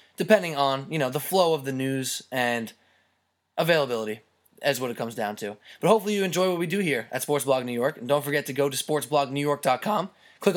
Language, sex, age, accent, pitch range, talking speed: English, male, 20-39, American, 125-150 Hz, 215 wpm